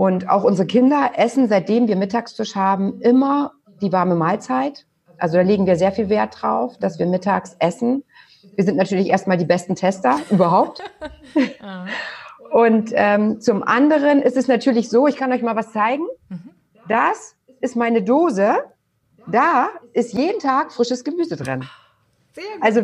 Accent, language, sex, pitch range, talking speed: German, German, female, 190-250 Hz, 155 wpm